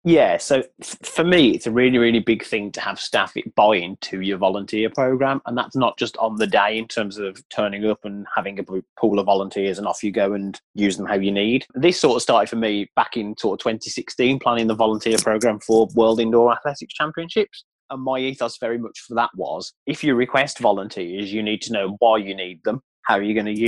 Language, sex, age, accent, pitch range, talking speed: English, male, 30-49, British, 105-125 Hz, 230 wpm